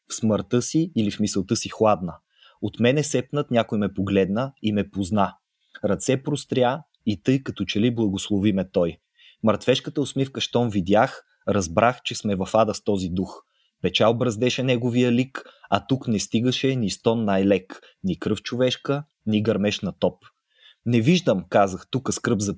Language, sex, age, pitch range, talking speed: Bulgarian, male, 20-39, 105-125 Hz, 160 wpm